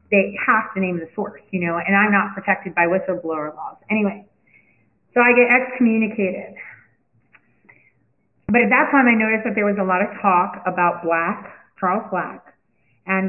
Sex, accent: female, American